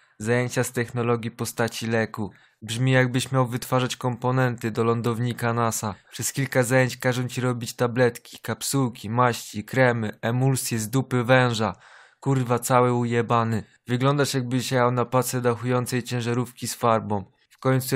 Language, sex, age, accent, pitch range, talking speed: Polish, male, 20-39, native, 115-125 Hz, 135 wpm